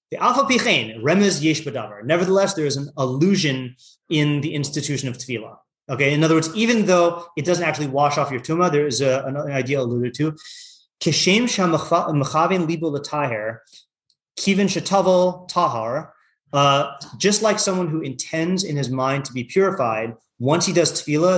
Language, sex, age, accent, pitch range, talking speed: English, male, 30-49, American, 135-175 Hz, 145 wpm